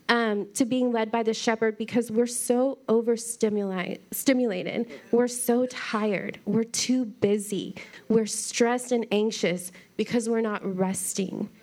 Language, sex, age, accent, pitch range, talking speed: English, female, 30-49, American, 200-235 Hz, 130 wpm